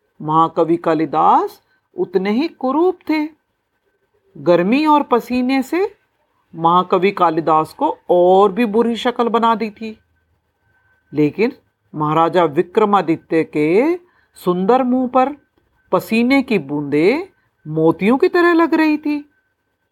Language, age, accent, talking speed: Hindi, 50-69, native, 110 wpm